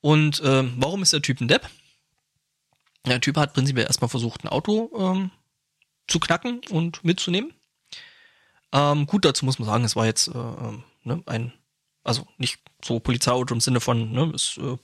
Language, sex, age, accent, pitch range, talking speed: German, male, 20-39, German, 125-155 Hz, 175 wpm